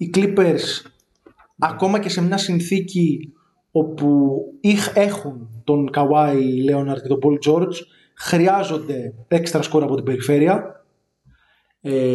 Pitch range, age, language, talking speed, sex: 140-190 Hz, 20-39, Greek, 115 wpm, male